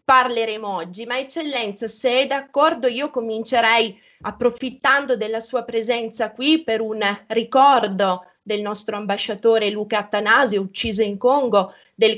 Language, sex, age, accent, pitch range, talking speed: Italian, female, 20-39, native, 205-245 Hz, 130 wpm